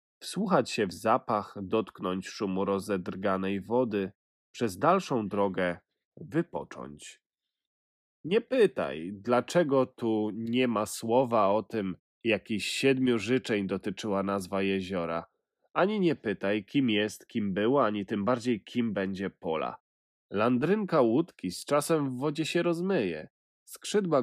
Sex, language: male, Polish